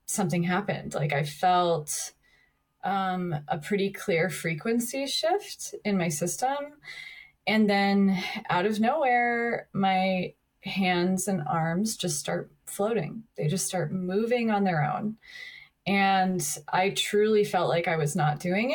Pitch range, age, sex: 175-245 Hz, 20-39, female